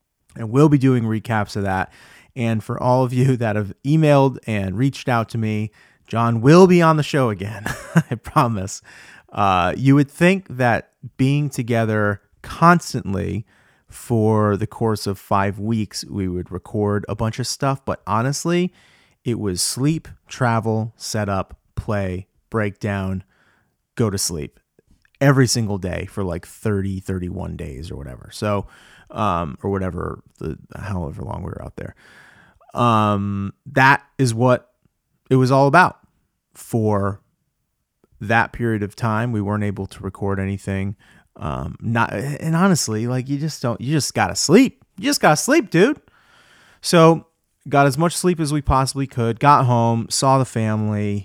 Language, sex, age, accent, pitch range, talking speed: English, male, 30-49, American, 100-135 Hz, 160 wpm